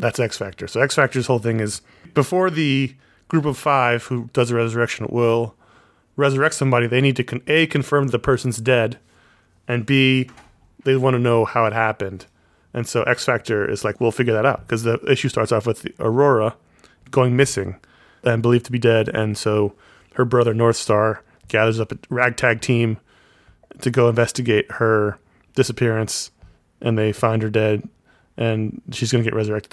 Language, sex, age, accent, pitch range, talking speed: English, male, 30-49, American, 110-130 Hz, 175 wpm